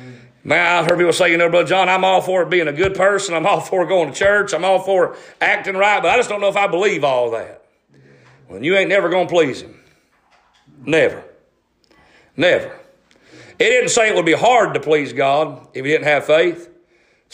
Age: 40-59